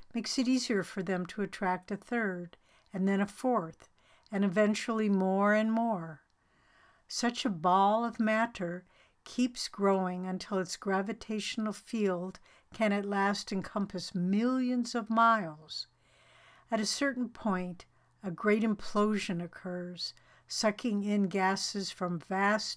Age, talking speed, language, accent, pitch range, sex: 60-79, 130 wpm, English, American, 185-215 Hz, female